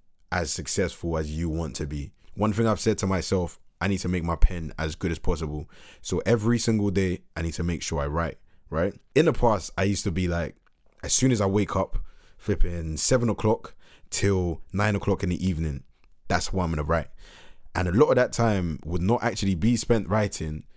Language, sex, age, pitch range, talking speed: English, male, 20-39, 85-110 Hz, 215 wpm